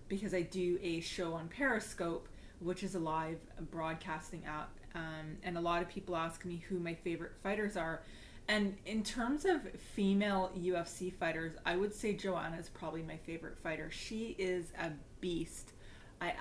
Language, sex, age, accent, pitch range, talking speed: English, female, 30-49, American, 160-195 Hz, 170 wpm